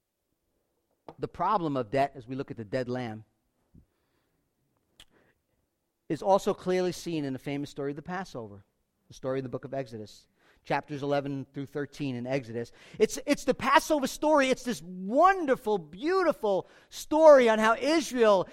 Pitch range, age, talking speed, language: 170-230 Hz, 40-59, 155 wpm, English